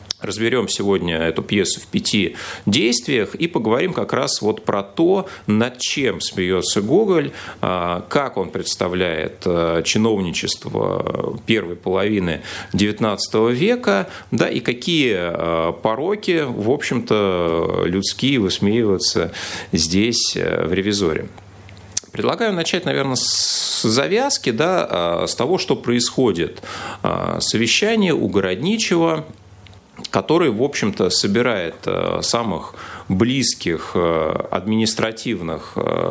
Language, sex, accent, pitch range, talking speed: Russian, male, native, 95-130 Hz, 95 wpm